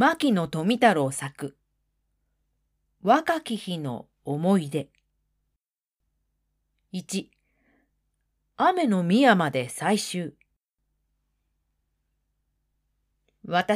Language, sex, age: Japanese, female, 40-59